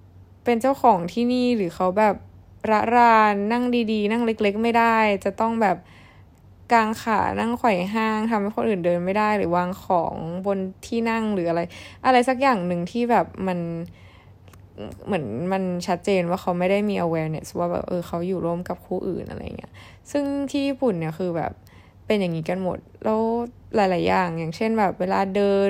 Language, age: Thai, 20-39